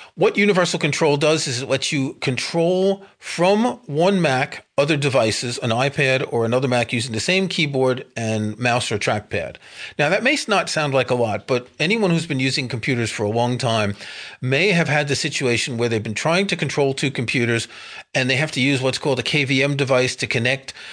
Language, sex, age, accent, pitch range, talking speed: English, male, 40-59, American, 125-170 Hz, 200 wpm